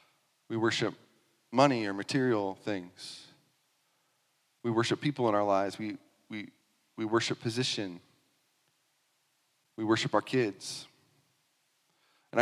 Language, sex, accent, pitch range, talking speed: English, male, American, 105-135 Hz, 105 wpm